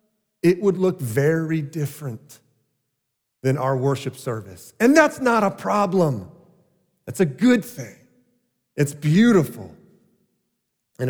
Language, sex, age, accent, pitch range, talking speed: English, male, 40-59, American, 125-175 Hz, 115 wpm